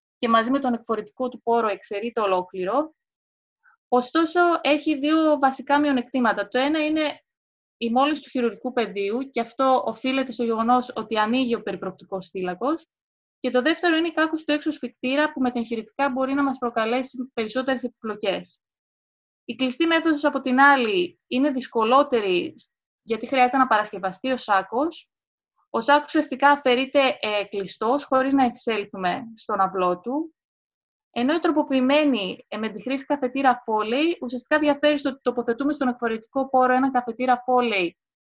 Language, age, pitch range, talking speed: Greek, 20-39, 225-285 Hz, 150 wpm